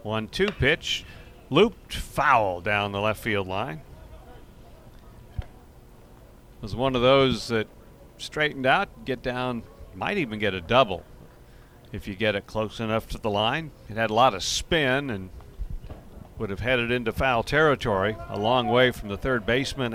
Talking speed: 160 wpm